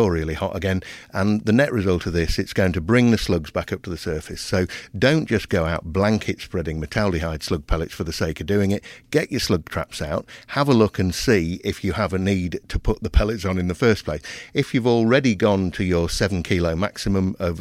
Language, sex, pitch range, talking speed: English, male, 85-105 Hz, 240 wpm